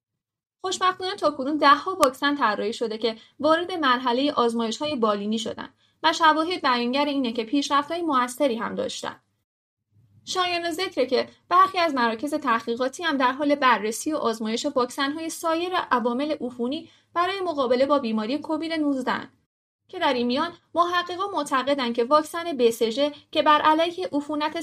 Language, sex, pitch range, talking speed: Persian, female, 245-315 Hz, 155 wpm